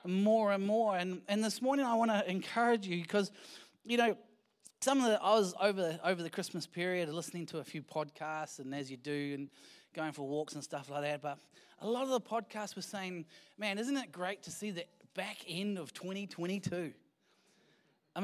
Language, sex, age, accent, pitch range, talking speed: English, male, 20-39, Australian, 185-250 Hz, 205 wpm